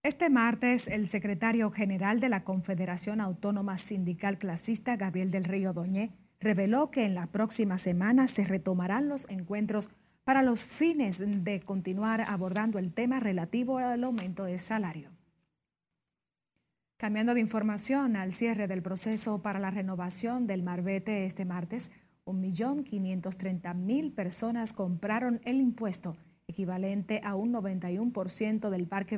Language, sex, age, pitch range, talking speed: Spanish, female, 30-49, 185-230 Hz, 130 wpm